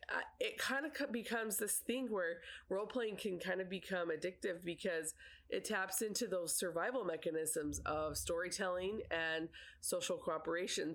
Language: English